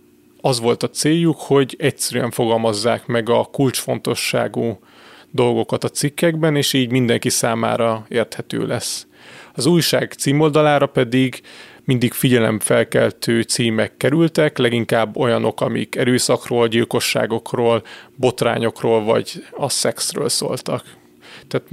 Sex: male